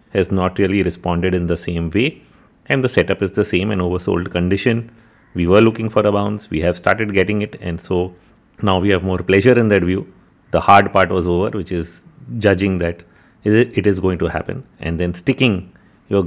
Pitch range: 90-110 Hz